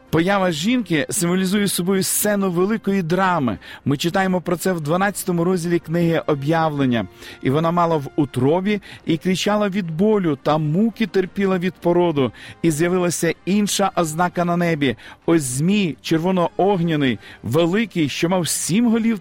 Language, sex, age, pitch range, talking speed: Ukrainian, male, 40-59, 155-195 Hz, 135 wpm